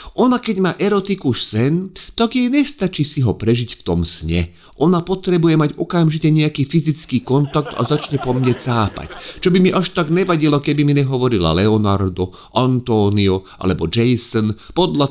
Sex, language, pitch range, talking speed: male, Slovak, 100-150 Hz, 160 wpm